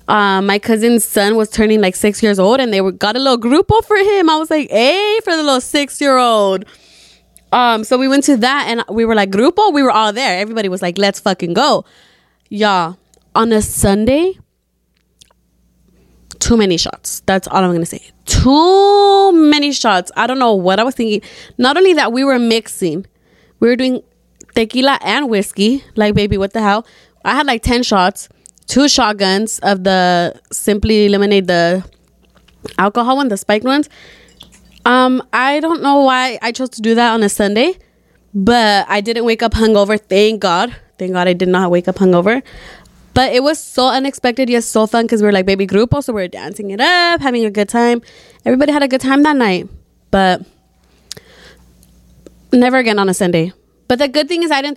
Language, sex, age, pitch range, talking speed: English, female, 20-39, 195-260 Hz, 195 wpm